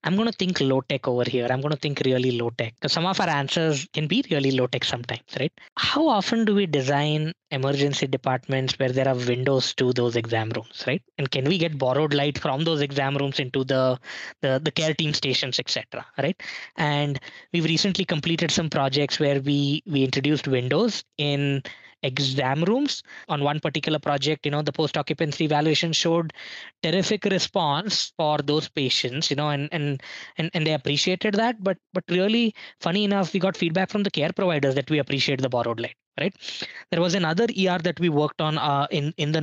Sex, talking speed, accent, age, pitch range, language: female, 195 wpm, Indian, 20-39, 140-180 Hz, English